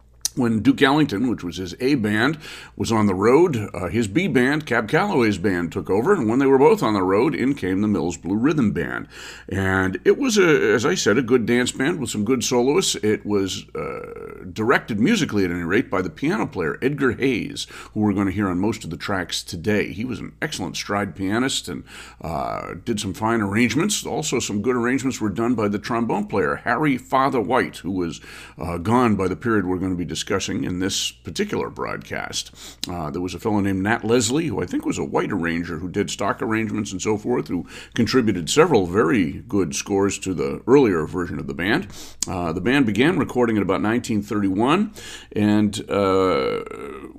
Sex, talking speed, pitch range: male, 205 wpm, 95-125 Hz